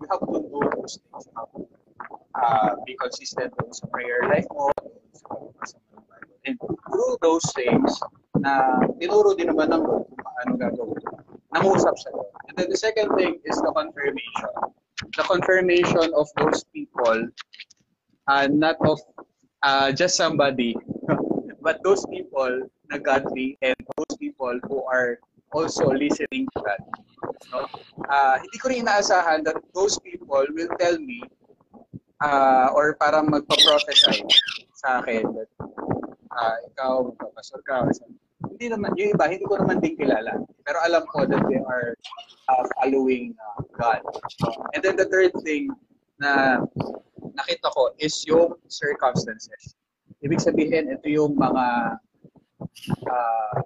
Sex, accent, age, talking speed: male, Filipino, 20-39, 125 wpm